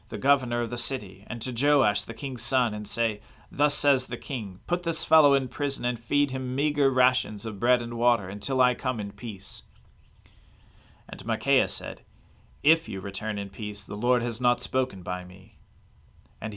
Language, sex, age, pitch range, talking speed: English, male, 40-59, 105-130 Hz, 190 wpm